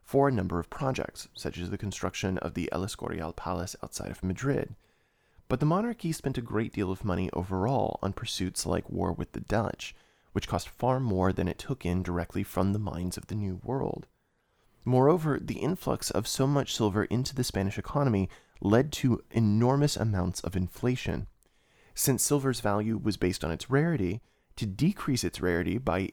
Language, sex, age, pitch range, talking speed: English, male, 30-49, 90-120 Hz, 185 wpm